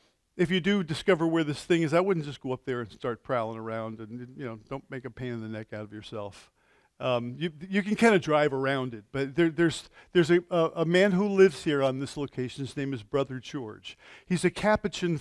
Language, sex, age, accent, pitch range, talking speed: English, male, 50-69, American, 130-175 Hz, 240 wpm